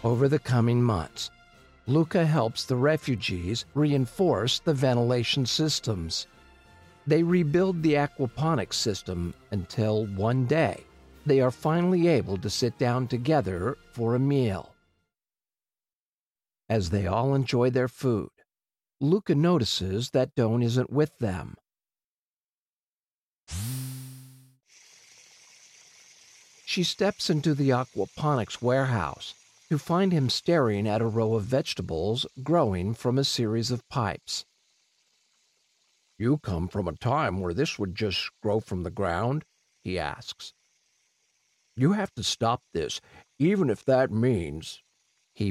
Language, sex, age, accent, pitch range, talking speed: English, male, 50-69, American, 100-135 Hz, 120 wpm